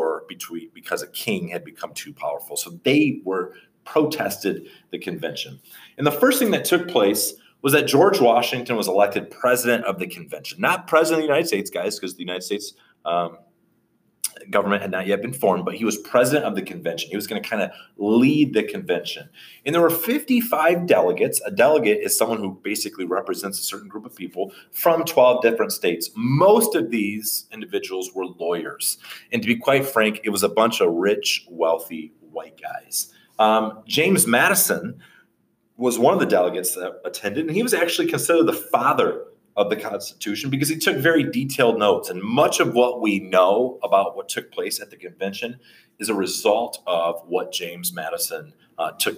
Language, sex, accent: English, male, American